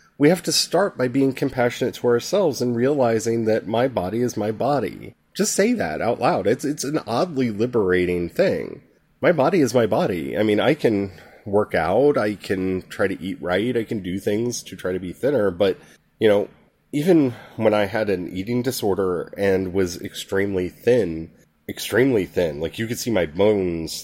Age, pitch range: 30-49, 95-130 Hz